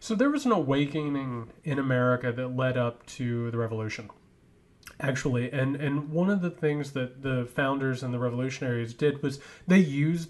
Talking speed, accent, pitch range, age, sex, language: 175 wpm, American, 125-160 Hz, 30-49, male, English